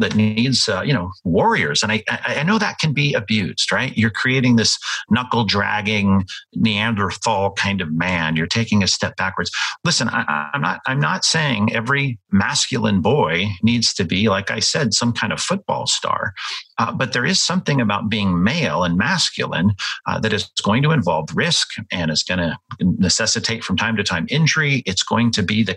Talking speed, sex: 190 wpm, male